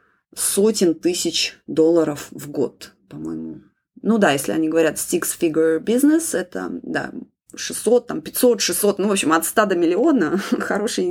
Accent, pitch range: native, 160-230 Hz